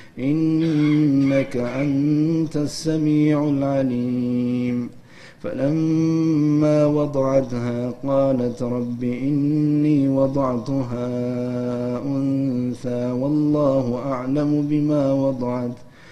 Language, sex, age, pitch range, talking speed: Amharic, male, 50-69, 125-150 Hz, 55 wpm